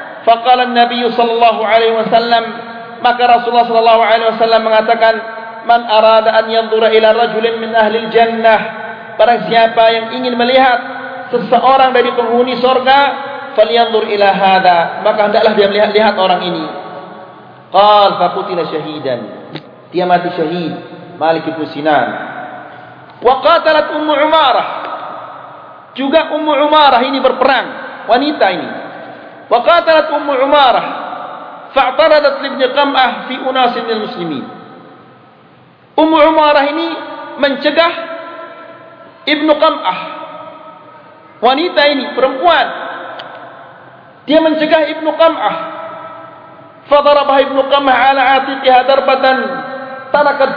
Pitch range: 225-300 Hz